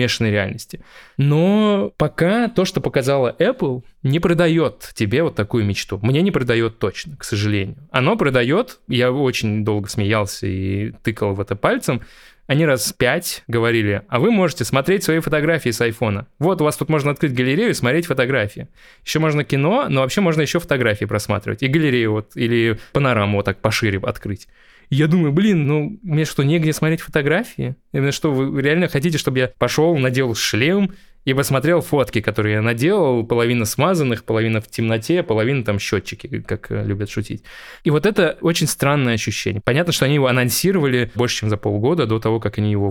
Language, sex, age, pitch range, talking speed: Russian, male, 20-39, 110-150 Hz, 175 wpm